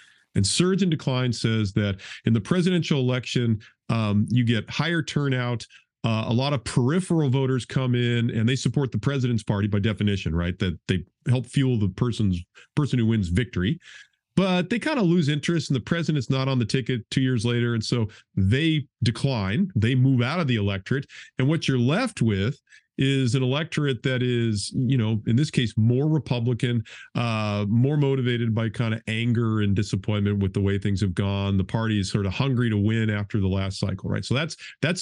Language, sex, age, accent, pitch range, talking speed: English, male, 40-59, American, 110-145 Hz, 200 wpm